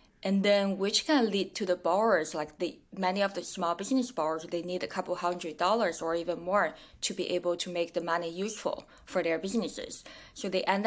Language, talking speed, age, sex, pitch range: English, 215 wpm, 20-39, female, 170-195 Hz